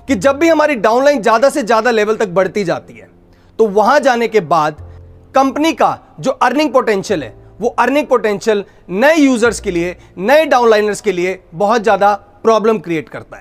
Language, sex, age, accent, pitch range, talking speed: Hindi, male, 40-59, native, 195-270 Hz, 180 wpm